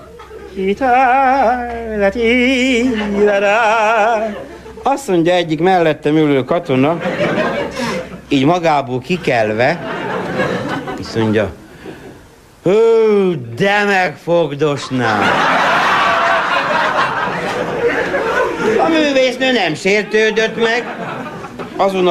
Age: 60-79